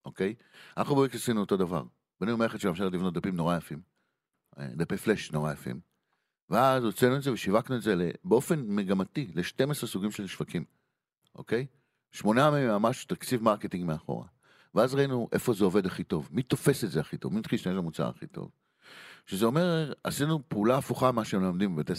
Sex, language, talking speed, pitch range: male, Hebrew, 180 wpm, 90-130 Hz